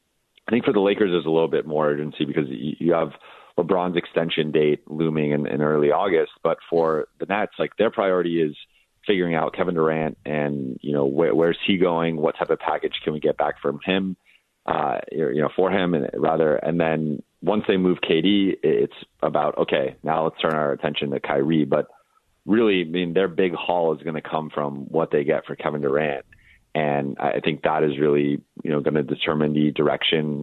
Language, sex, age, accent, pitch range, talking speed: English, male, 30-49, American, 75-90 Hz, 205 wpm